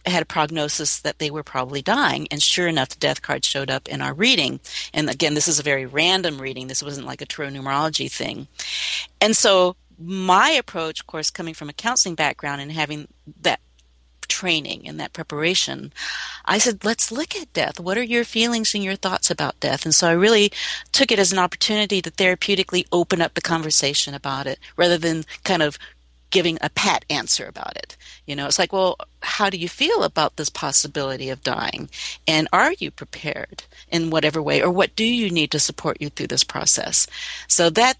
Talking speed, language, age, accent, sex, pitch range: 200 wpm, English, 40-59, American, female, 150-190 Hz